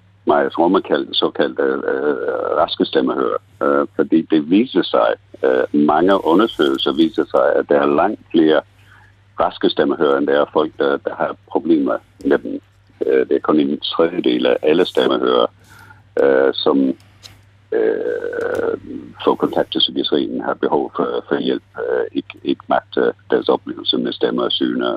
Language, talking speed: Danish, 150 wpm